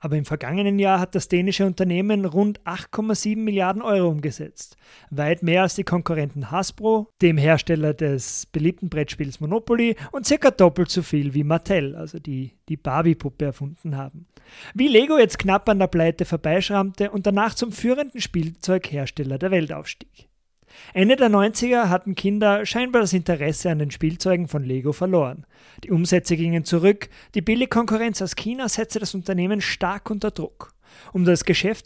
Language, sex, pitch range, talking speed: German, male, 165-215 Hz, 160 wpm